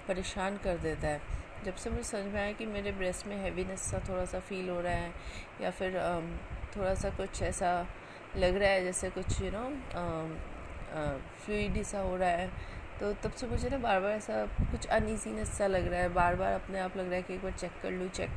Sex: female